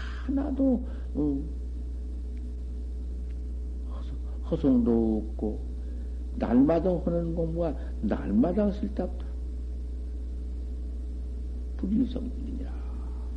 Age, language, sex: 60-79, Korean, male